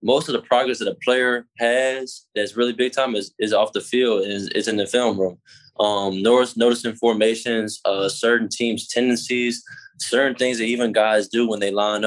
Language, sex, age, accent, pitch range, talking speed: English, male, 10-29, American, 100-120 Hz, 200 wpm